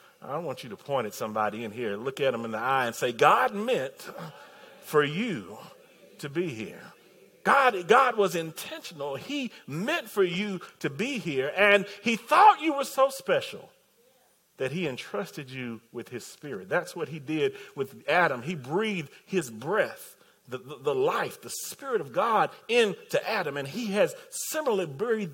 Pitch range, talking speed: 185-310 Hz, 175 wpm